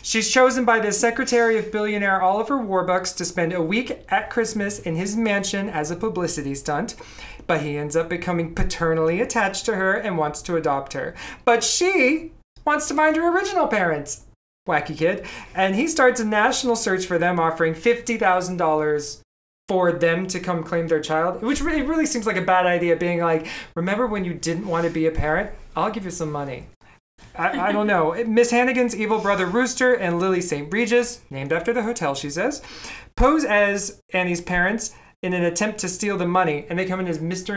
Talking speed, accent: 195 wpm, American